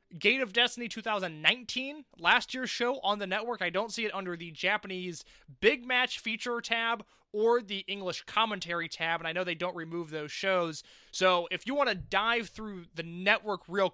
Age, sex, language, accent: 20-39, male, English, American